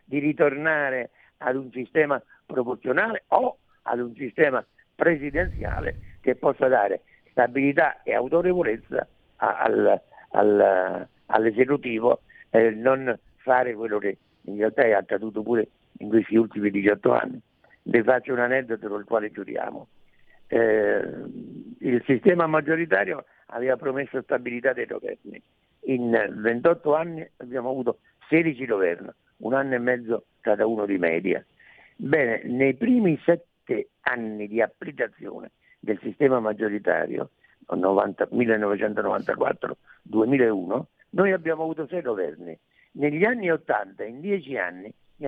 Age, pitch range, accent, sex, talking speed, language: 60-79, 115-160 Hz, native, male, 125 wpm, Italian